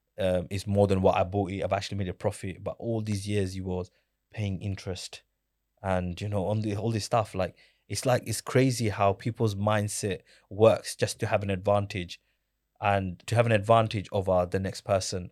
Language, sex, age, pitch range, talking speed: English, male, 20-39, 100-120 Hz, 205 wpm